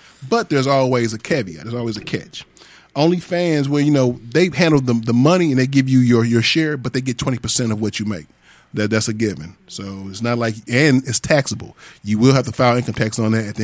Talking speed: 250 wpm